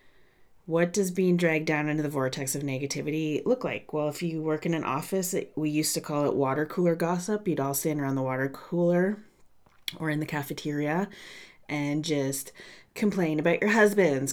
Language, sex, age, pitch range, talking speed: English, female, 30-49, 145-180 Hz, 185 wpm